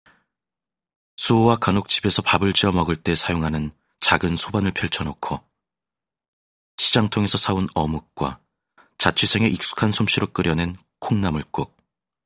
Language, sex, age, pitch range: Korean, male, 30-49, 80-105 Hz